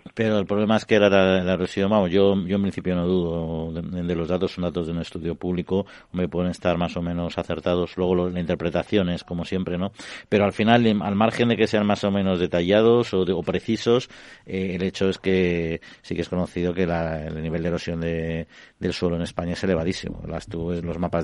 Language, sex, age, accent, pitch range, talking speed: Spanish, male, 50-69, Spanish, 90-100 Hz, 225 wpm